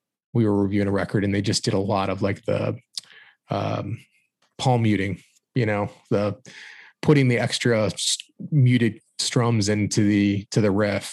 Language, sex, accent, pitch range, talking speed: English, male, American, 100-125 Hz, 160 wpm